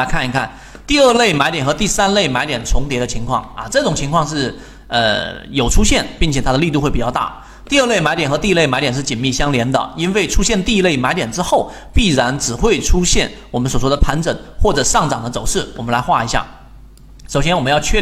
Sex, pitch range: male, 130-185 Hz